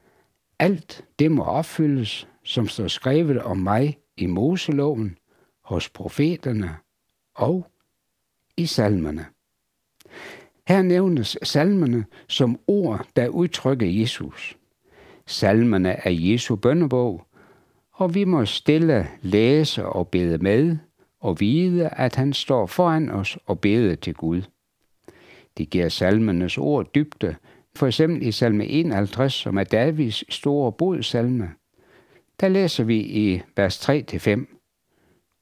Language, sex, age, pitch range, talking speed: Danish, male, 60-79, 100-155 Hz, 115 wpm